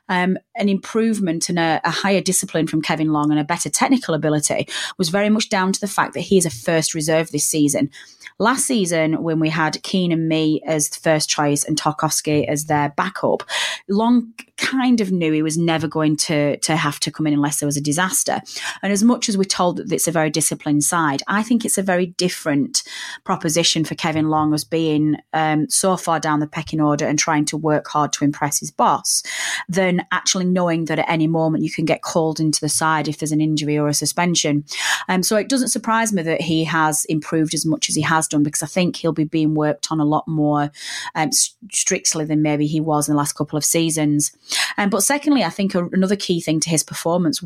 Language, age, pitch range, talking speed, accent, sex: English, 30-49, 150-185 Hz, 230 wpm, British, female